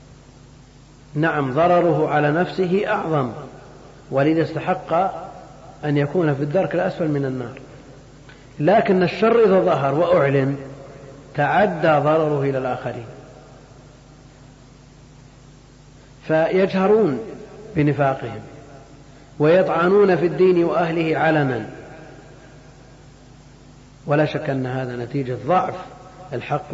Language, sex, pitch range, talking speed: Arabic, male, 130-150 Hz, 85 wpm